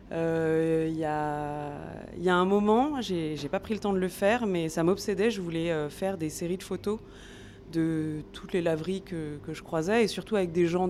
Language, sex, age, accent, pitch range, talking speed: French, female, 20-39, French, 160-195 Hz, 215 wpm